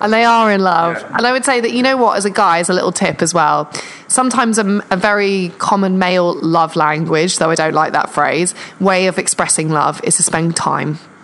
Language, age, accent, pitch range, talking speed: English, 20-39, British, 165-205 Hz, 235 wpm